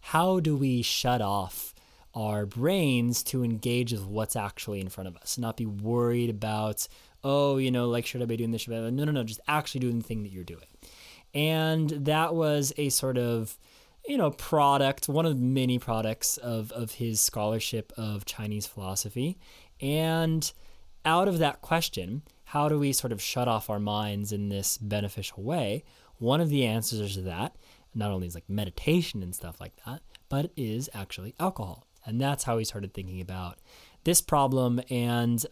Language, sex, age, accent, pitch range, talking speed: English, male, 20-39, American, 110-140 Hz, 190 wpm